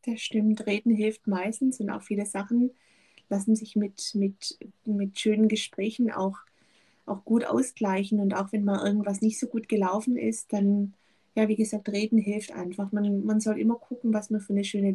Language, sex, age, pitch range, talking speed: German, female, 30-49, 200-230 Hz, 185 wpm